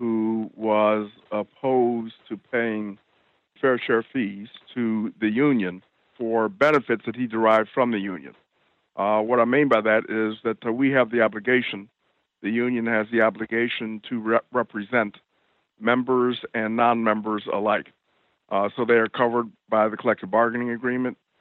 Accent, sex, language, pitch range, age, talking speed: American, male, English, 105-120 Hz, 50-69, 150 wpm